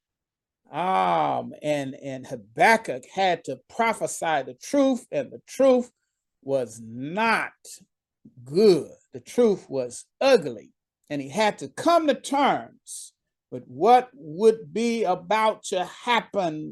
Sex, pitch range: male, 165-260 Hz